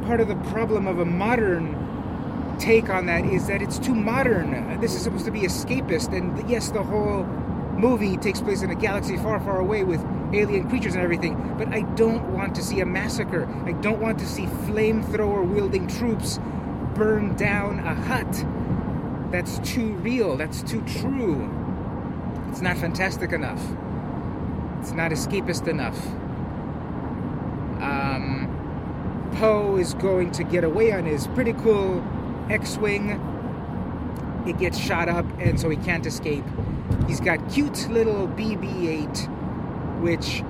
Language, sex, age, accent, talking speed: English, male, 30-49, American, 145 wpm